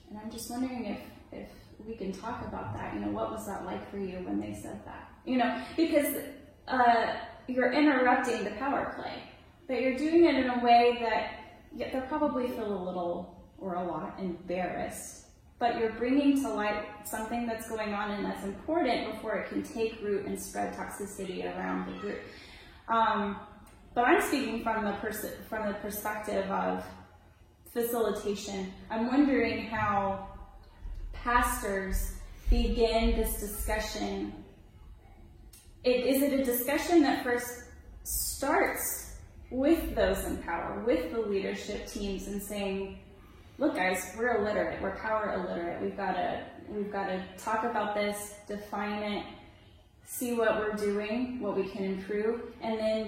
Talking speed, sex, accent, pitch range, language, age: 155 wpm, female, American, 195-245 Hz, English, 10-29